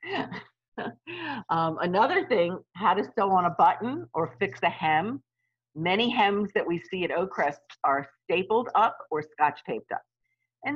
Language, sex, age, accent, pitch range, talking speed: English, female, 50-69, American, 145-205 Hz, 160 wpm